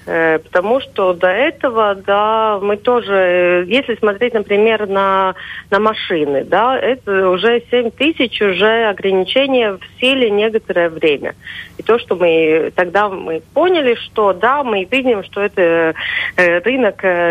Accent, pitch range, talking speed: native, 175-225 Hz, 130 wpm